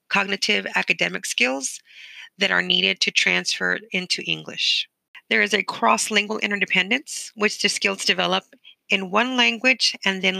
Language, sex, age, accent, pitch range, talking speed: English, female, 40-59, American, 185-225 Hz, 140 wpm